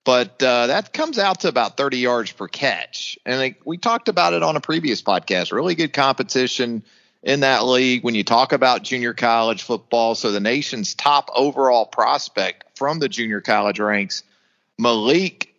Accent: American